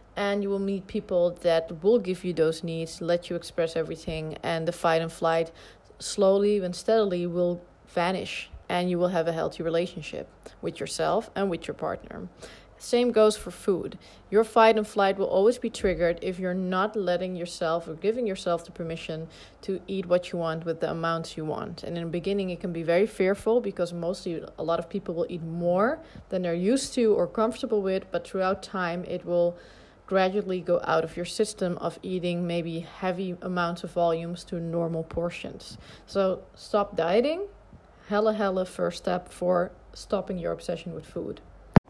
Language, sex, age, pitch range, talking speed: English, female, 30-49, 170-205 Hz, 185 wpm